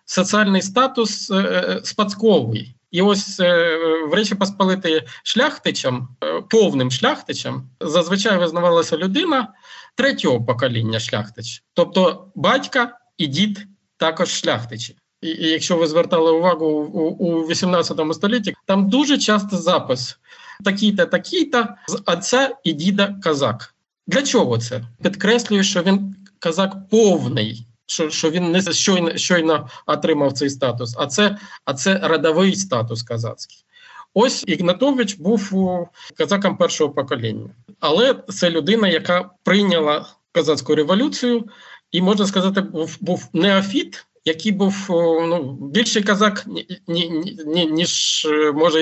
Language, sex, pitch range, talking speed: Ukrainian, male, 155-200 Hz, 125 wpm